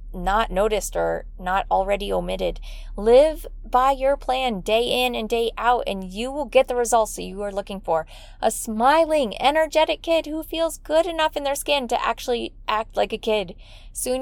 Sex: female